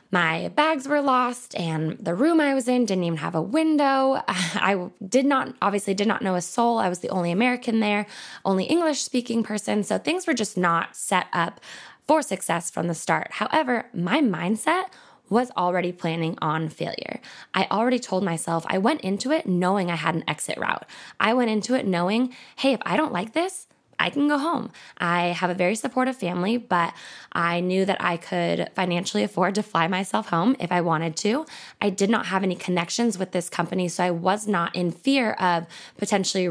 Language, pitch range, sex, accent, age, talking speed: English, 175-250 Hz, female, American, 10-29, 200 wpm